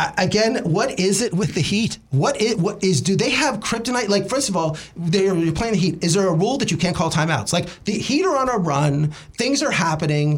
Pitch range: 160-215 Hz